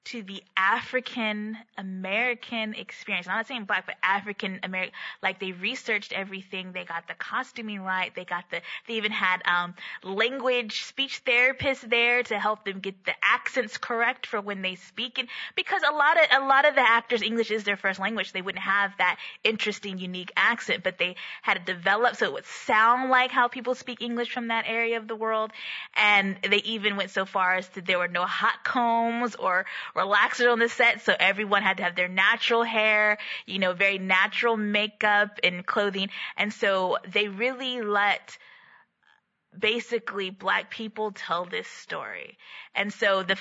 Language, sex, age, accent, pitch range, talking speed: English, female, 20-39, American, 195-235 Hz, 180 wpm